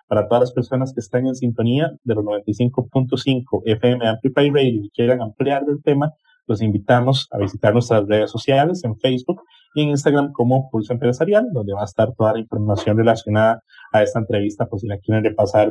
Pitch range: 115-150 Hz